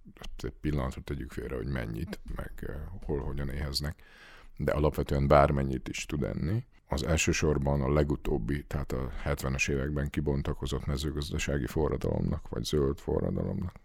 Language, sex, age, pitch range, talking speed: Hungarian, male, 50-69, 70-85 Hz, 130 wpm